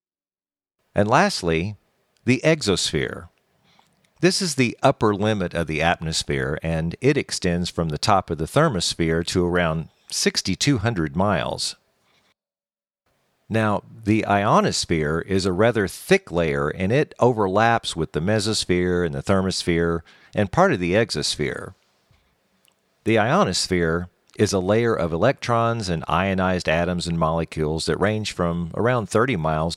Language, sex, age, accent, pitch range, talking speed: English, male, 50-69, American, 80-110 Hz, 130 wpm